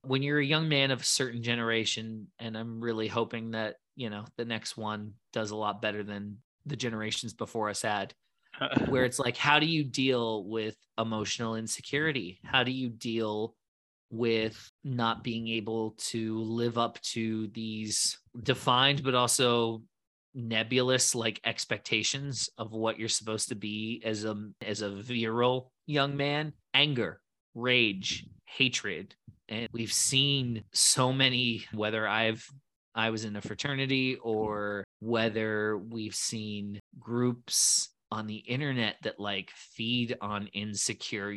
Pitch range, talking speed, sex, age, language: 110-130 Hz, 145 wpm, male, 30-49, English